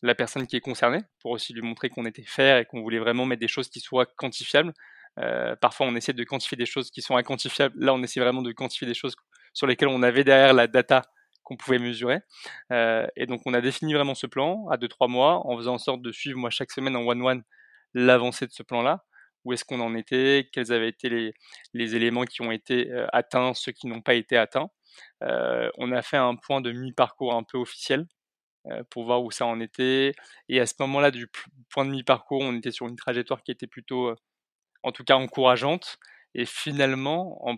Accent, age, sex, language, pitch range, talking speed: French, 20-39, male, French, 120-135 Hz, 225 wpm